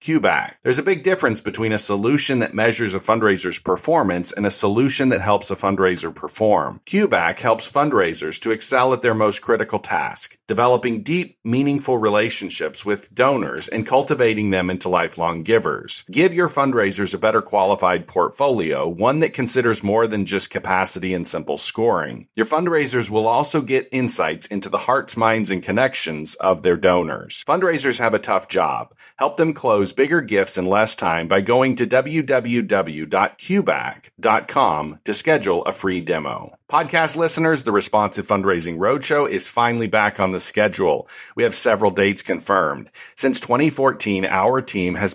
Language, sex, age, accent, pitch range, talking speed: English, male, 40-59, American, 95-130 Hz, 160 wpm